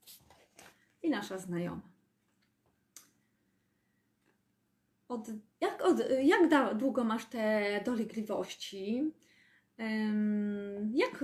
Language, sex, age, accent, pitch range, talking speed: Polish, female, 30-49, native, 205-290 Hz, 55 wpm